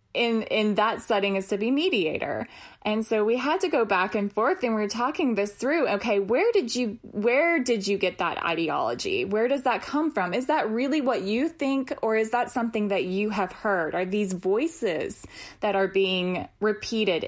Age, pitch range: 20-39, 190-245 Hz